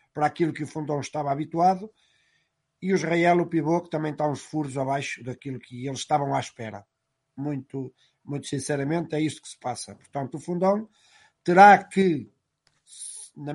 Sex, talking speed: male, 170 wpm